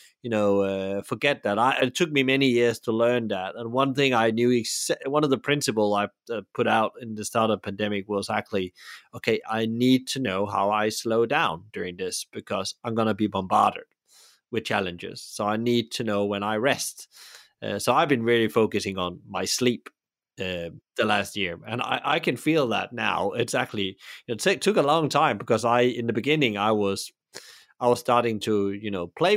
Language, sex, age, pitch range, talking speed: English, male, 30-49, 105-130 Hz, 205 wpm